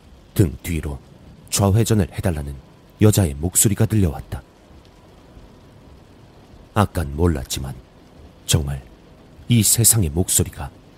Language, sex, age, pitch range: Korean, male, 40-59, 80-105 Hz